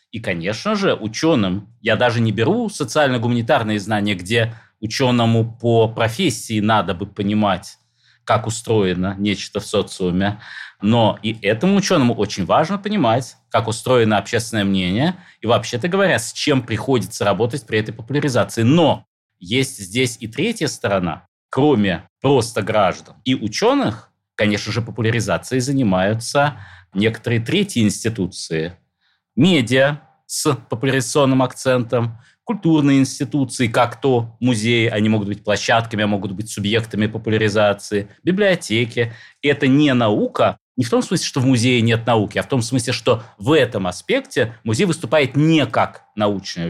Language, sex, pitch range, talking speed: Russian, male, 105-140 Hz, 135 wpm